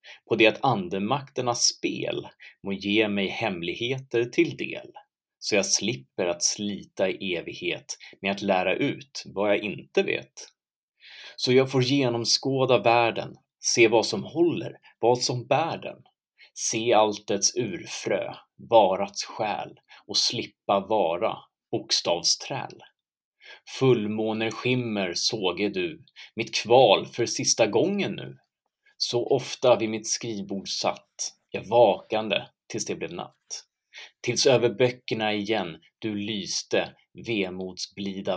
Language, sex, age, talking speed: Swedish, male, 30-49, 120 wpm